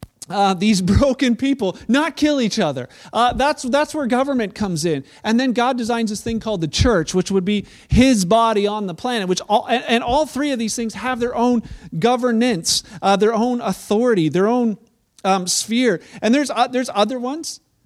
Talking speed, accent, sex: 200 wpm, American, male